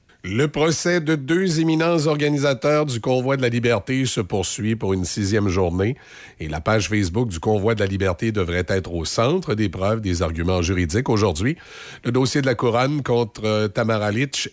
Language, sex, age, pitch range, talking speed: French, male, 50-69, 100-130 Hz, 180 wpm